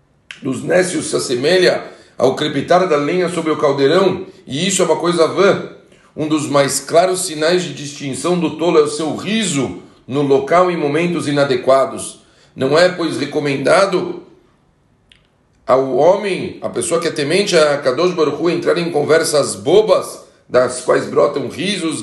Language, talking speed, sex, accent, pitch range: Portuguese, 155 wpm, male, Brazilian, 140-180 Hz